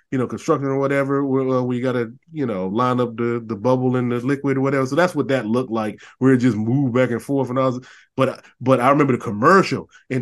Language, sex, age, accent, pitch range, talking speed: English, male, 20-39, American, 120-150 Hz, 260 wpm